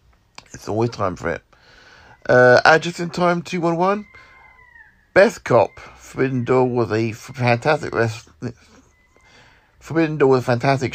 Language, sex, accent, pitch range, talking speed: English, male, British, 115-140 Hz, 135 wpm